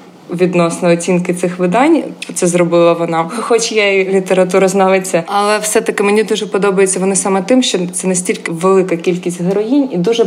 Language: Ukrainian